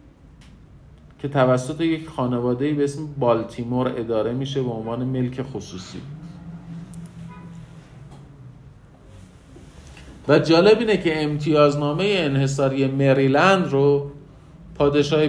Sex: male